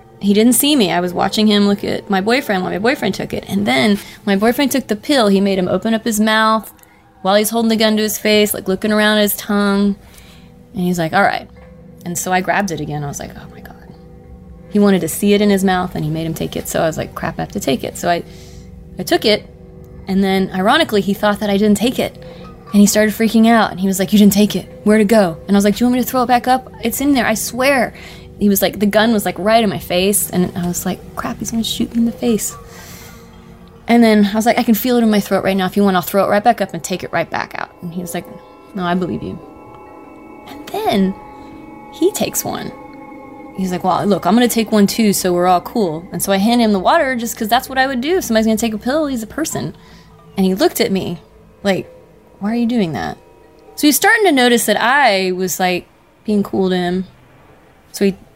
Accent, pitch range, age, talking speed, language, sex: American, 185-230 Hz, 20-39, 270 wpm, English, female